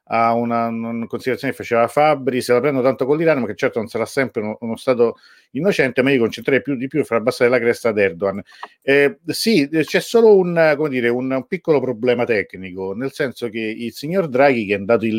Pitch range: 105-135 Hz